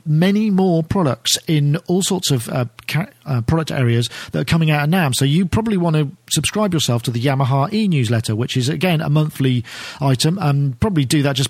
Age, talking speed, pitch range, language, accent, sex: 40-59, 215 wpm, 130-170 Hz, English, British, male